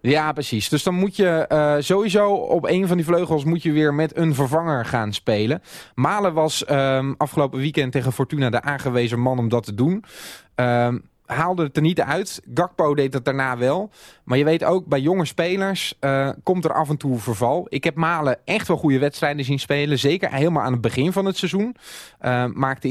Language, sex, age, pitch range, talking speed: Dutch, male, 20-39, 135-180 Hz, 205 wpm